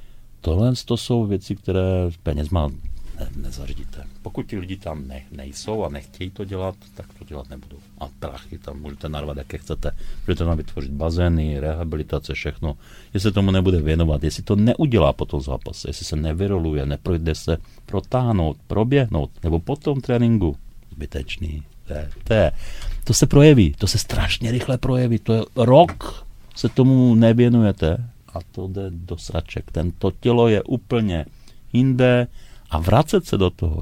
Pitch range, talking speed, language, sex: 80-110 Hz, 155 wpm, Czech, male